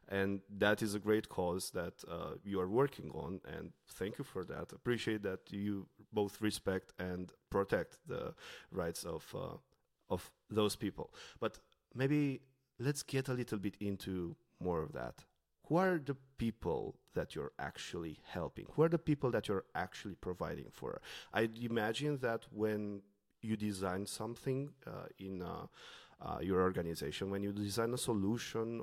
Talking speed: 160 wpm